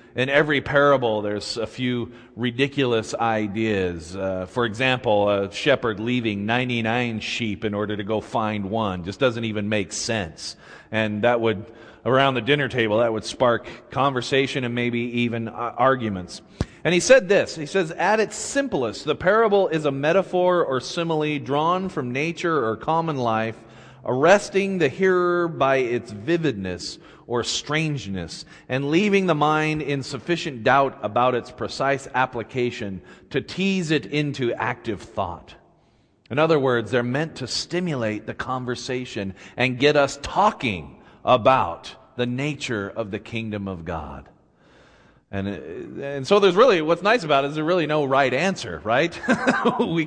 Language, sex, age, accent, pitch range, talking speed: English, male, 40-59, American, 110-150 Hz, 155 wpm